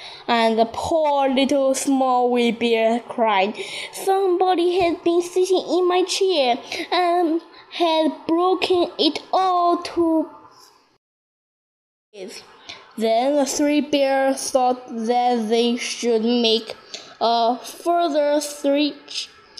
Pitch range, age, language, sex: 245-360 Hz, 10-29, Chinese, female